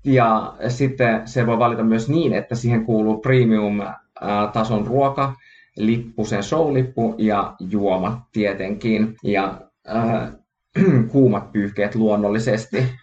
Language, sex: Finnish, male